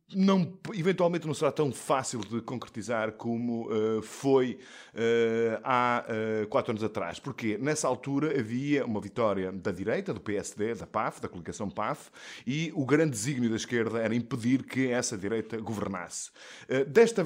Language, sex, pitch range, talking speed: Portuguese, male, 110-135 Hz, 160 wpm